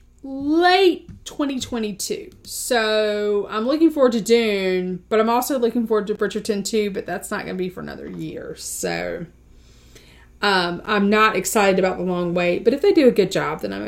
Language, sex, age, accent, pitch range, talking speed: English, female, 30-49, American, 175-215 Hz, 185 wpm